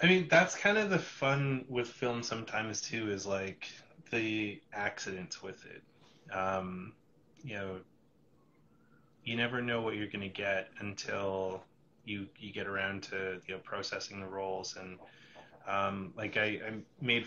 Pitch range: 95-105 Hz